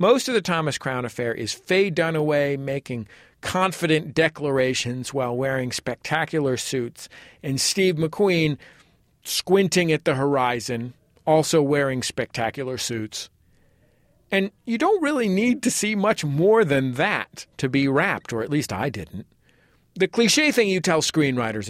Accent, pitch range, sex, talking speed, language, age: American, 125-170 Hz, male, 145 wpm, English, 50-69